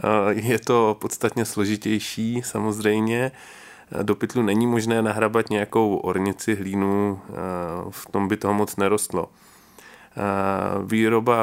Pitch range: 100-115 Hz